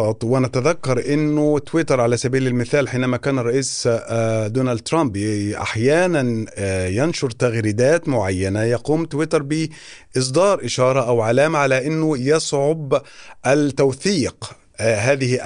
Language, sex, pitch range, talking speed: Arabic, male, 115-140 Hz, 100 wpm